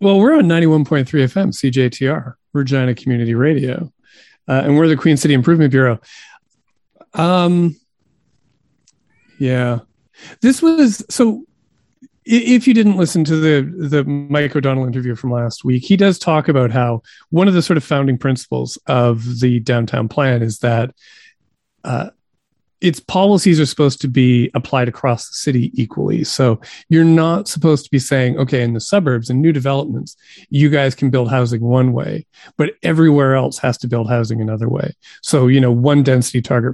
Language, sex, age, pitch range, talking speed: English, male, 40-59, 125-160 Hz, 165 wpm